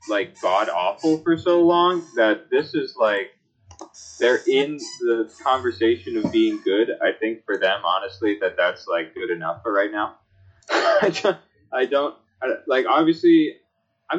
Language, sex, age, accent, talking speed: English, male, 20-39, American, 150 wpm